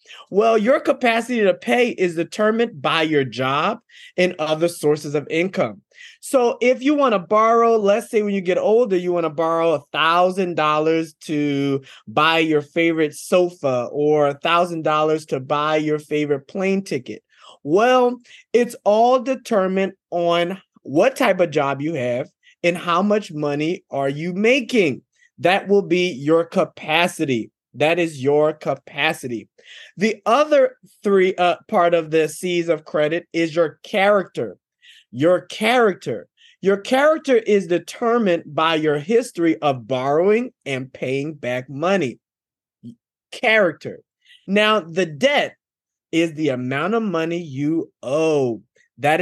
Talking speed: 135 wpm